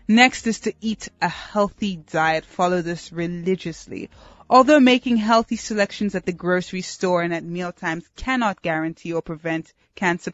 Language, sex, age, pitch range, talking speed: English, female, 20-39, 165-210 Hz, 150 wpm